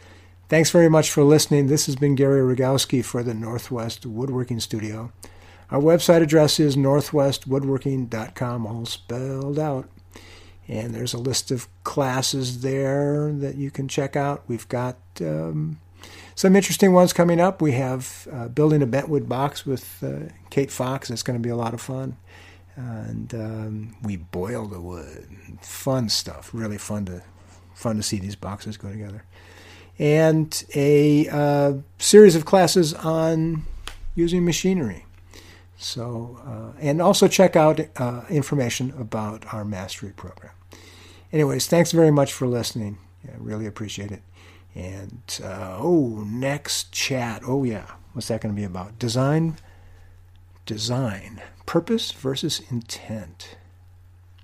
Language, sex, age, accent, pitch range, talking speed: English, male, 50-69, American, 90-140 Hz, 145 wpm